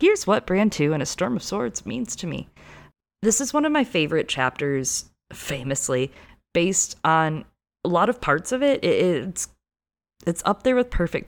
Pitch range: 140-195 Hz